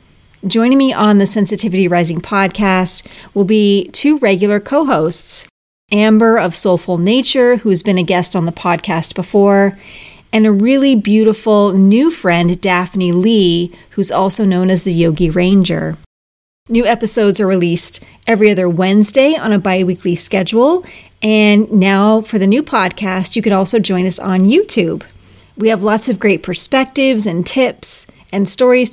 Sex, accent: female, American